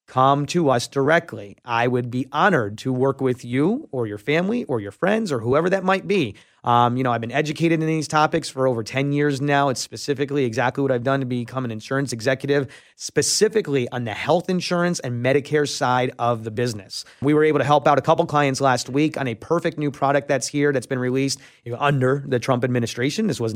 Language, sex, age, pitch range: English, male, 30-49, 125-155 Hz